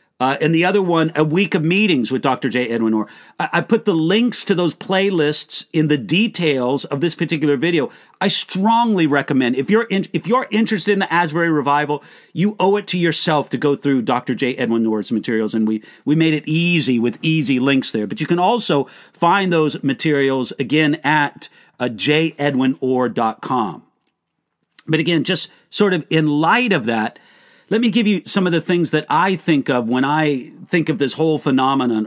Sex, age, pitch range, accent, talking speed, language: male, 50-69, 140-200 Hz, American, 195 wpm, English